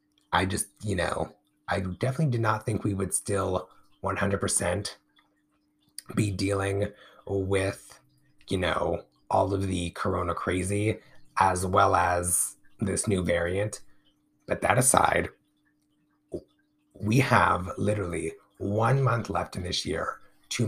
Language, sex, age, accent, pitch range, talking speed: English, male, 30-49, American, 95-120 Hz, 120 wpm